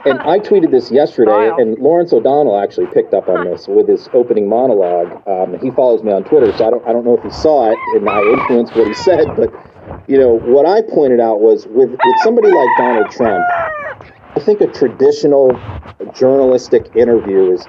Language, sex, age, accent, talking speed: English, male, 40-59, American, 205 wpm